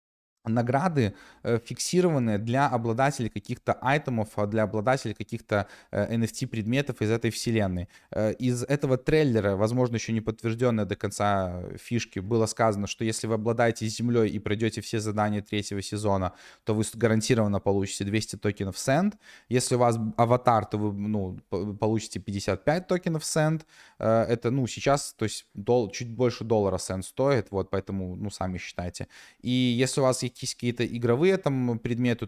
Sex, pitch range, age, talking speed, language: male, 105-125 Hz, 20-39, 145 wpm, Russian